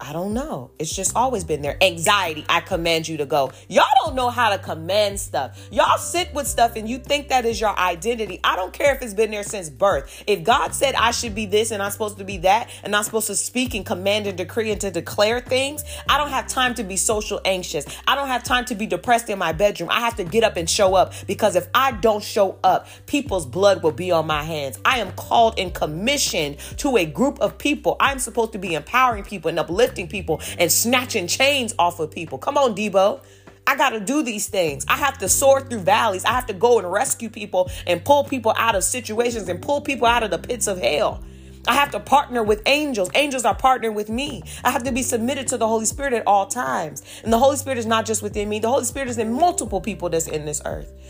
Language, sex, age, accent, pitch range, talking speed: English, female, 30-49, American, 190-255 Hz, 250 wpm